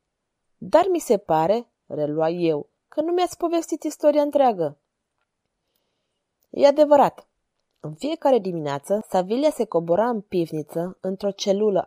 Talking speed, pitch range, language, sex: 120 wpm, 180-240 Hz, Romanian, female